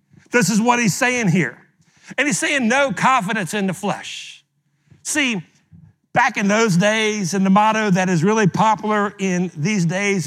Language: English